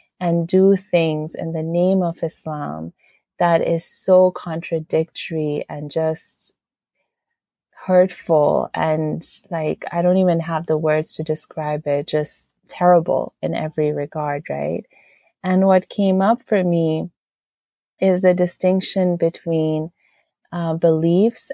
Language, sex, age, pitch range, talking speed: English, female, 30-49, 165-195 Hz, 125 wpm